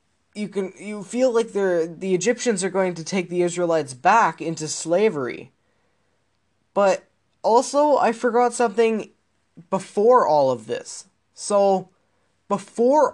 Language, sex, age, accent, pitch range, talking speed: English, male, 10-29, American, 155-205 Hz, 130 wpm